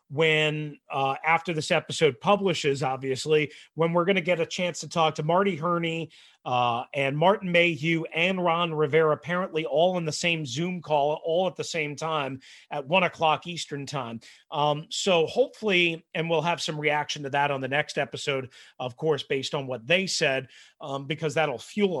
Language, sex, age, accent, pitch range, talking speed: English, male, 30-49, American, 150-185 Hz, 185 wpm